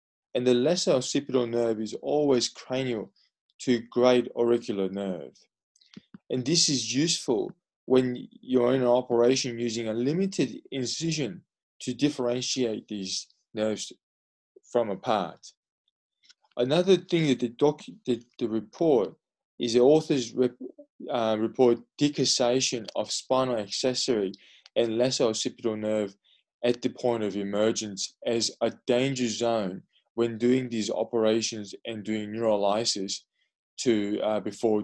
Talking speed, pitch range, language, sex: 125 wpm, 115-135 Hz, English, male